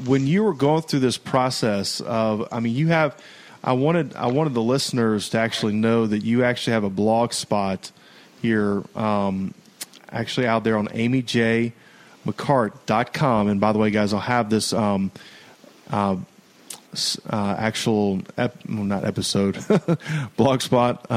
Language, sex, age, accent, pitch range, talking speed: English, male, 30-49, American, 105-125 Hz, 150 wpm